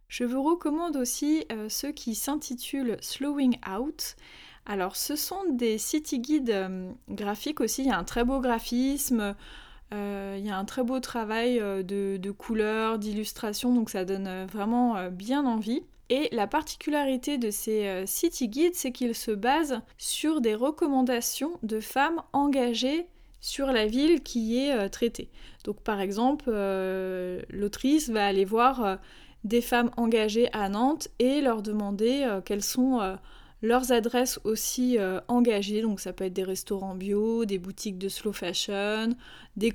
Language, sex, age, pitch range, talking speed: French, female, 20-39, 205-260 Hz, 170 wpm